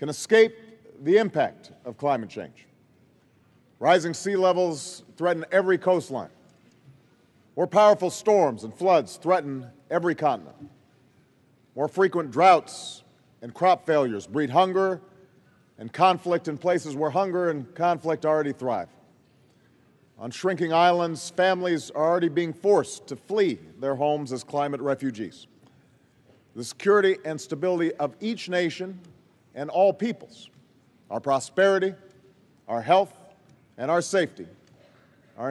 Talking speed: 120 wpm